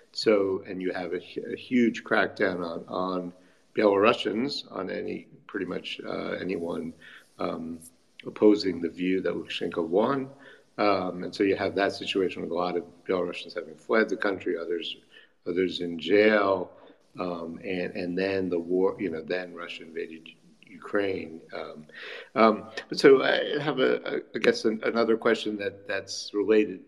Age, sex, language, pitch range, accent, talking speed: 60-79, male, English, 90-105 Hz, American, 160 wpm